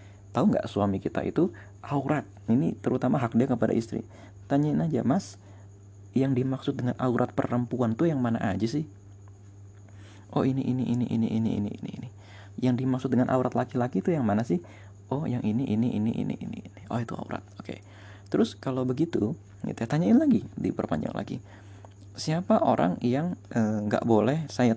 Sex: male